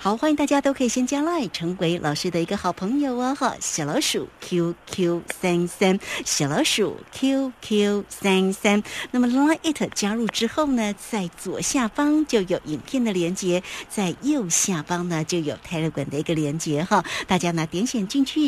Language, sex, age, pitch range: Chinese, female, 60-79, 175-255 Hz